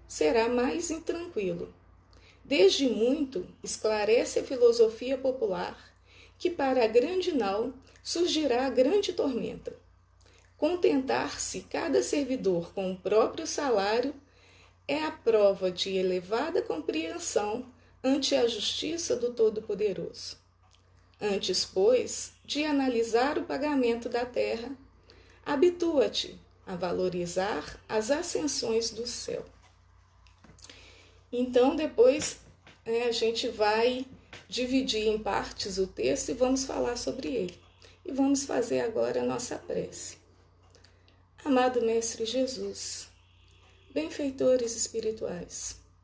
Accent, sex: Brazilian, female